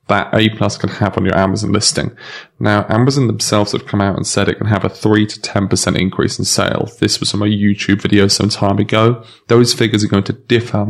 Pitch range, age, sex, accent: 105-120 Hz, 30-49, male, British